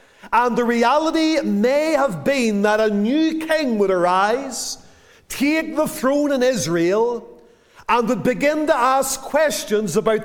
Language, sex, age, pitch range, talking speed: English, male, 40-59, 220-270 Hz, 140 wpm